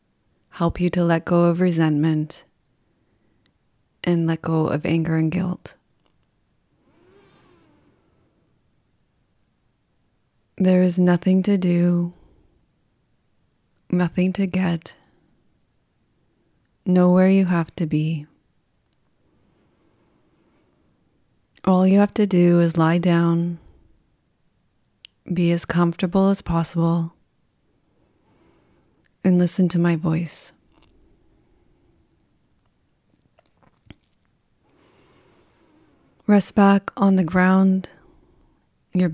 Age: 30-49